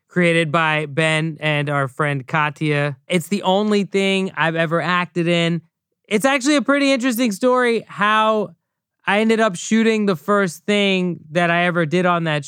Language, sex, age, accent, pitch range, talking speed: English, male, 20-39, American, 150-190 Hz, 170 wpm